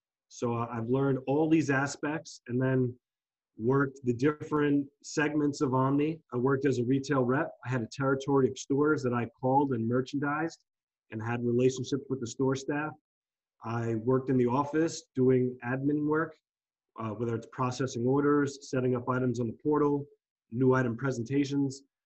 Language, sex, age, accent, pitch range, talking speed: English, male, 30-49, American, 125-145 Hz, 165 wpm